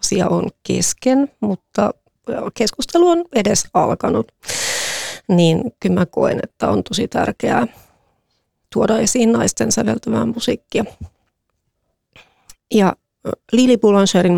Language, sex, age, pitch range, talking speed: Finnish, female, 30-49, 175-220 Hz, 100 wpm